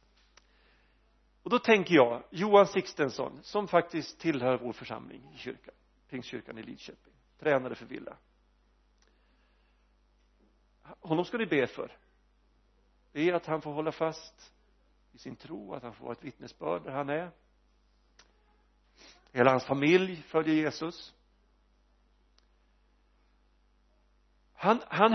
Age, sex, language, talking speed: 50-69, male, Swedish, 120 wpm